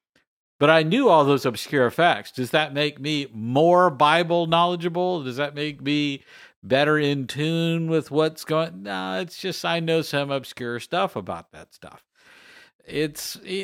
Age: 50-69